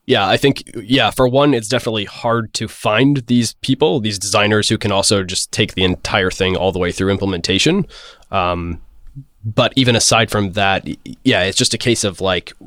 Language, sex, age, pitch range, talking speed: English, male, 20-39, 85-110 Hz, 195 wpm